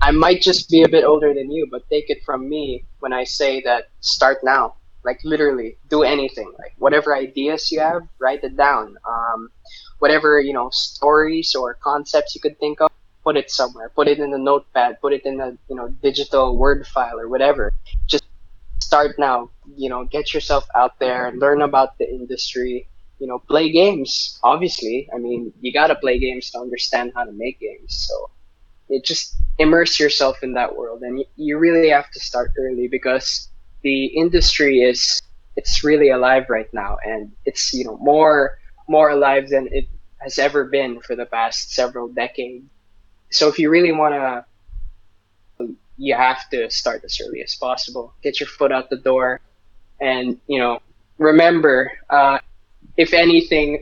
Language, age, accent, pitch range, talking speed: English, 20-39, Filipino, 125-150 Hz, 180 wpm